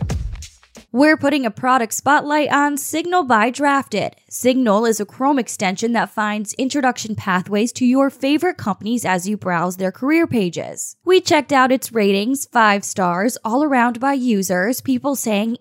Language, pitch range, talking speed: English, 200-275 Hz, 160 wpm